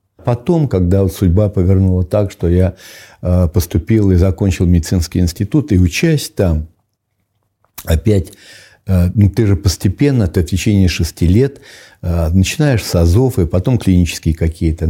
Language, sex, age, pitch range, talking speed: Russian, male, 60-79, 90-105 Hz, 135 wpm